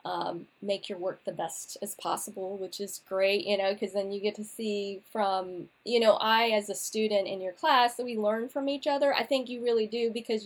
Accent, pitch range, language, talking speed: American, 200-245 Hz, English, 235 wpm